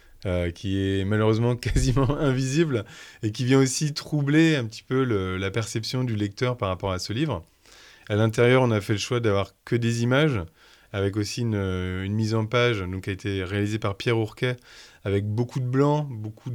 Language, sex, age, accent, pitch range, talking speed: French, male, 20-39, French, 100-125 Hz, 195 wpm